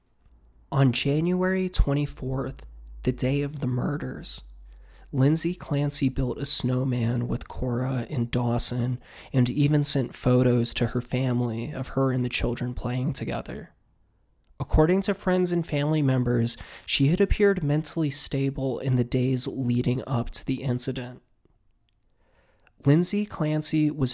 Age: 20-39